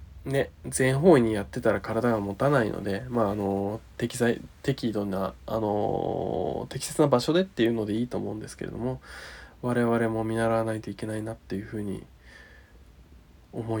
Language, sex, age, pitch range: Japanese, male, 20-39, 105-130 Hz